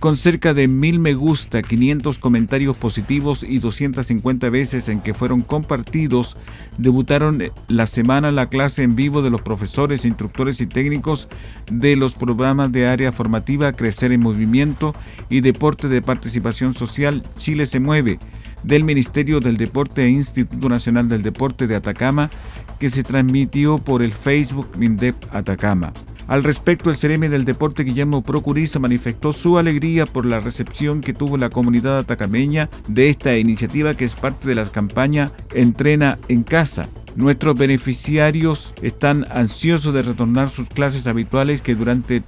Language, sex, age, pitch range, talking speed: Spanish, male, 50-69, 120-145 Hz, 150 wpm